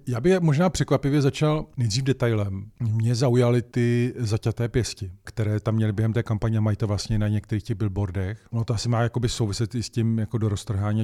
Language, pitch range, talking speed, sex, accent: Czech, 110-125 Hz, 195 wpm, male, native